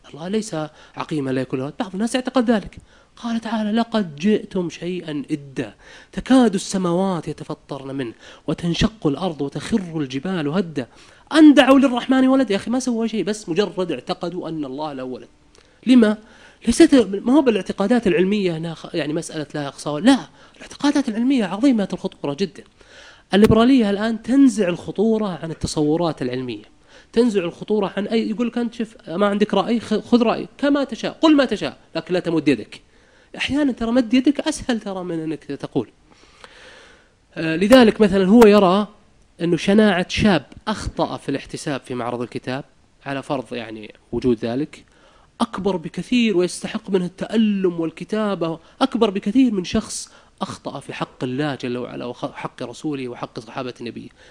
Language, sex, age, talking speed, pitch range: Arabic, male, 30-49, 150 wpm, 155-230 Hz